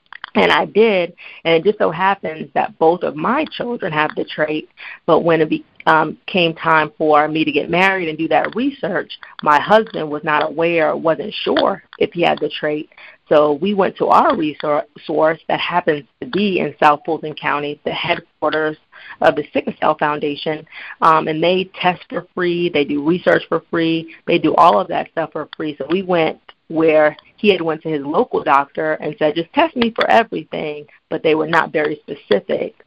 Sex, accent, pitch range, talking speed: female, American, 150-180 Hz, 200 wpm